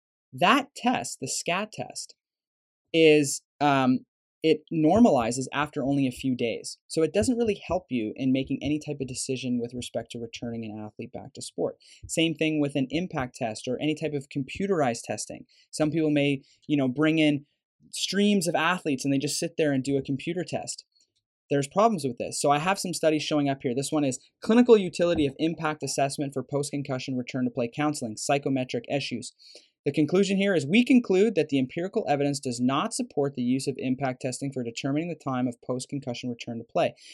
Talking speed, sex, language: 195 wpm, male, English